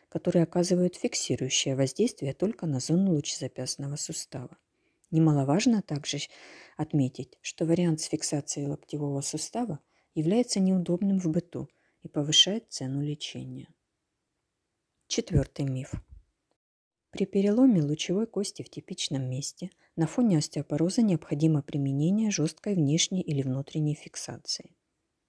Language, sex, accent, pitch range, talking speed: Ukrainian, female, native, 145-190 Hz, 105 wpm